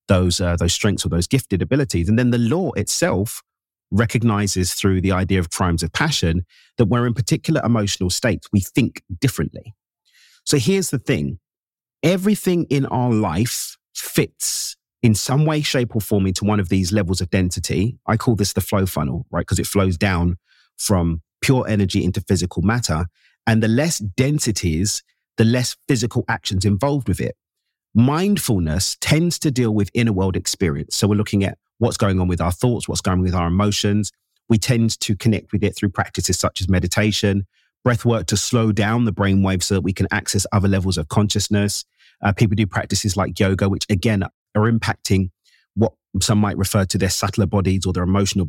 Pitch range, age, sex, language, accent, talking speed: 95-120 Hz, 40-59, male, English, British, 190 wpm